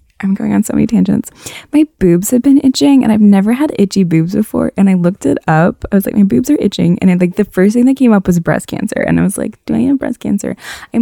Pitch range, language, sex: 160-235 Hz, English, female